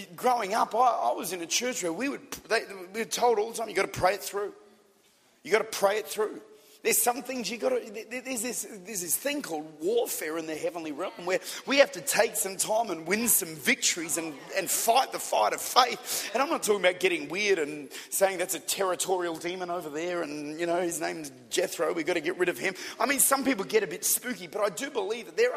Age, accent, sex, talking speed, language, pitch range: 30-49, Australian, male, 245 wpm, English, 185-255 Hz